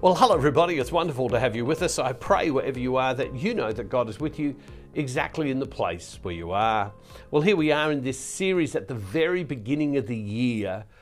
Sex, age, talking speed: male, 50-69, 240 wpm